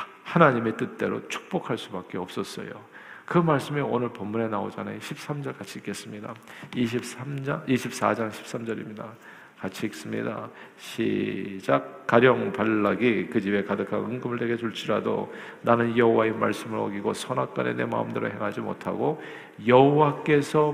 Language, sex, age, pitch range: Korean, male, 50-69, 100-125 Hz